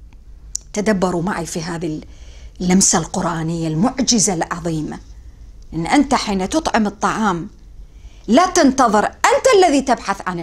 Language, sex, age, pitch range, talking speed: English, female, 50-69, 170-260 Hz, 110 wpm